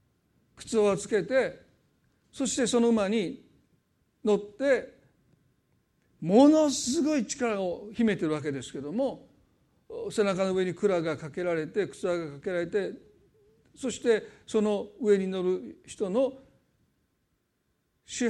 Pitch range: 180-230 Hz